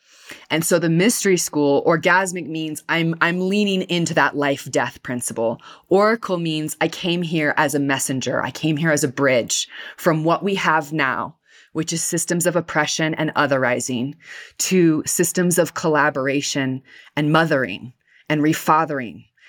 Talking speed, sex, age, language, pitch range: 150 wpm, female, 20-39, English, 145-185 Hz